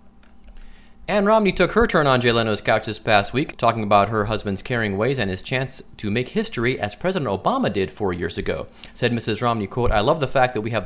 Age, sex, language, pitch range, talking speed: 30-49, male, English, 110-160 Hz, 230 wpm